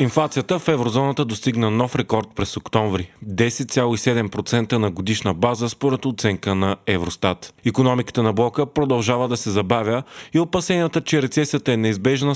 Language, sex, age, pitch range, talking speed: Bulgarian, male, 30-49, 110-130 Hz, 145 wpm